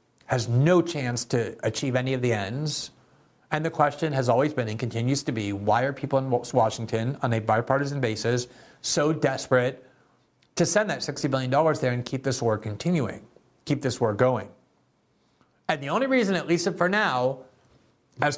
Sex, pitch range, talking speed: male, 125-150 Hz, 175 wpm